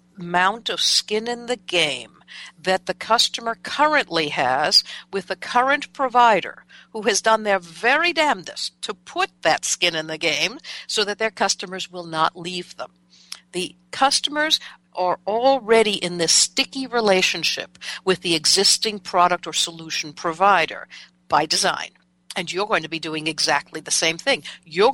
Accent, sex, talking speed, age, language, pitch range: American, female, 155 wpm, 60-79, English, 165-220 Hz